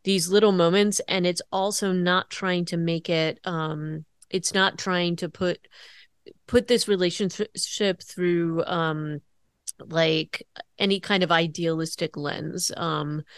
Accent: American